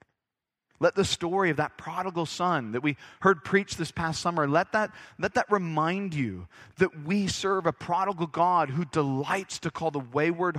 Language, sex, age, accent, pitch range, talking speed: English, male, 40-59, American, 140-180 Hz, 180 wpm